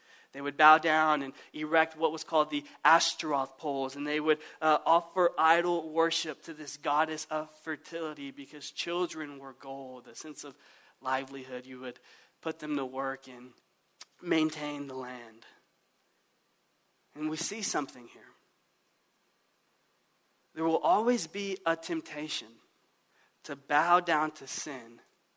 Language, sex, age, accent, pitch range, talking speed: English, male, 30-49, American, 155-210 Hz, 135 wpm